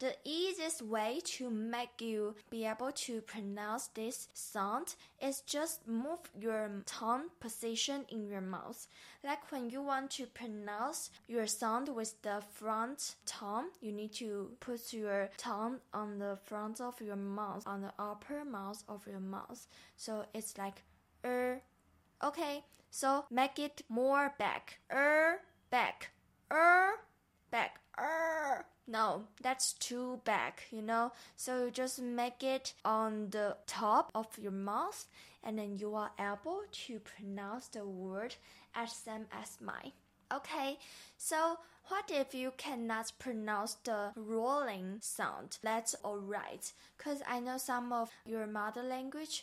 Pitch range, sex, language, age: 215-270 Hz, female, Chinese, 10-29